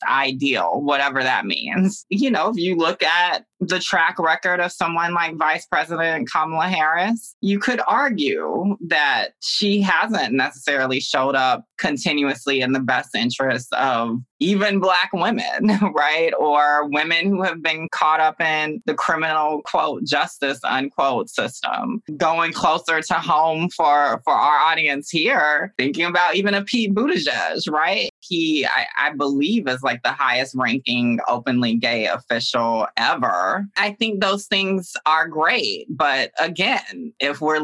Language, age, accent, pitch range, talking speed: English, 20-39, American, 140-190 Hz, 145 wpm